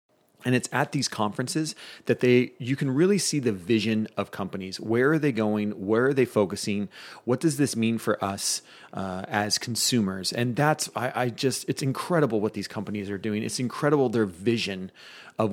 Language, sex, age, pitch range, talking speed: English, male, 30-49, 105-125 Hz, 190 wpm